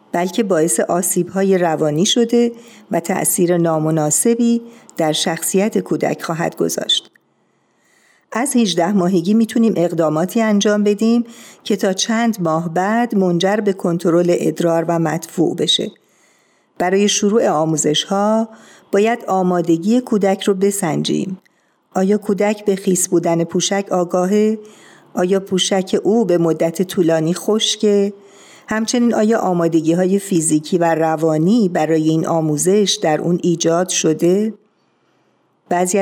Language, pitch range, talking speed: Persian, 170-215 Hz, 115 wpm